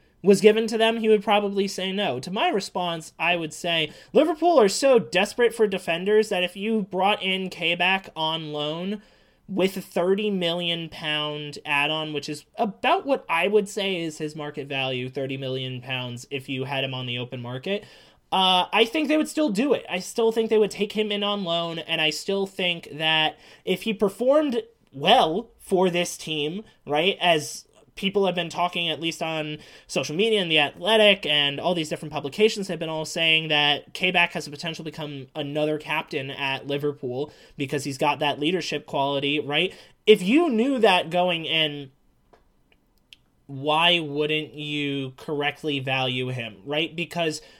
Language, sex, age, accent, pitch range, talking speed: English, male, 20-39, American, 150-200 Hz, 180 wpm